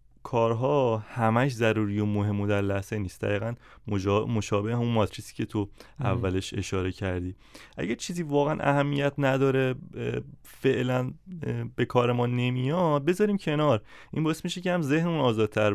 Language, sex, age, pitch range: Persian, male, 30-49, 105-140 Hz